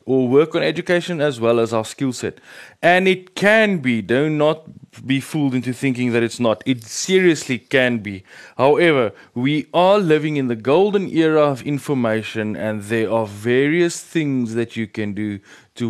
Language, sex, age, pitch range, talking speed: English, male, 30-49, 110-150 Hz, 175 wpm